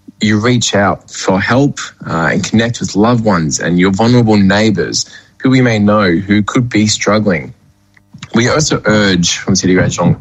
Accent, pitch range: Australian, 95-115 Hz